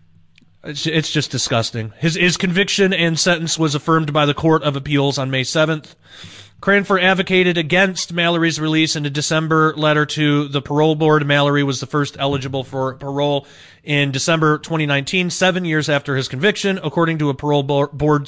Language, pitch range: English, 140-165 Hz